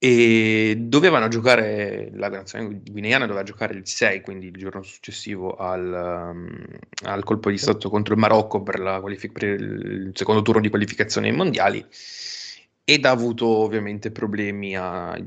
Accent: native